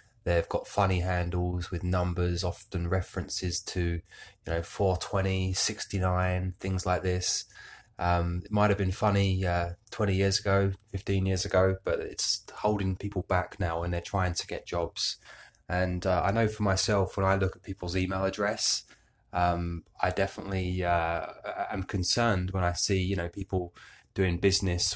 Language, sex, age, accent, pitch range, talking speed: English, male, 20-39, British, 90-100 Hz, 165 wpm